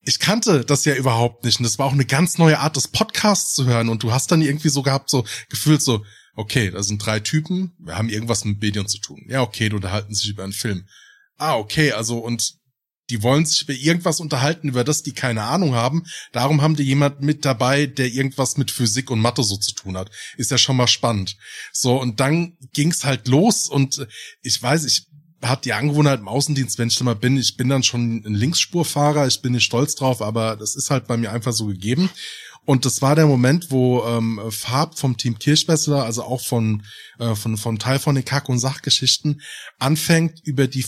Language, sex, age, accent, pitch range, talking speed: German, male, 20-39, German, 115-145 Hz, 220 wpm